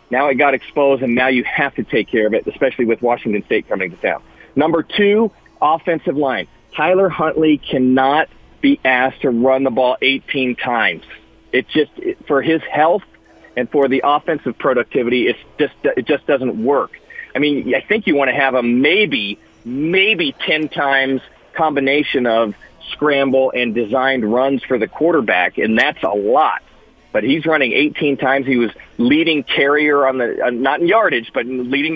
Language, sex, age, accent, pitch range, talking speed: English, male, 40-59, American, 130-180 Hz, 175 wpm